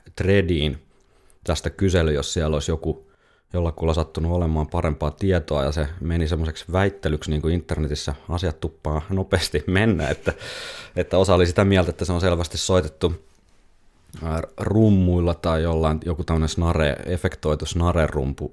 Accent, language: native, Finnish